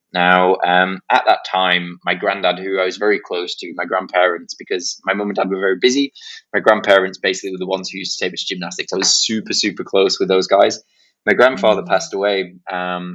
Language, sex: English, male